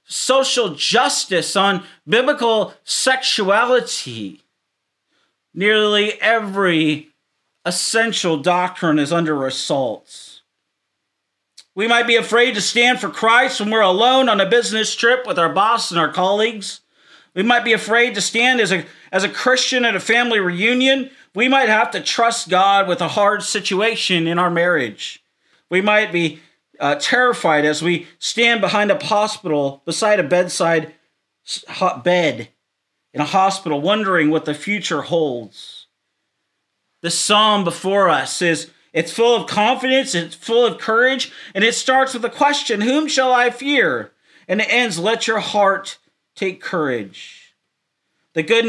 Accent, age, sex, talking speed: American, 40-59, male, 145 wpm